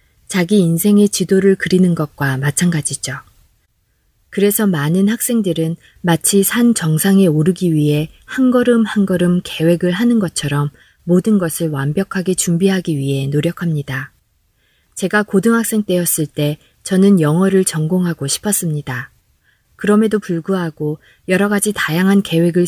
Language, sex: Korean, female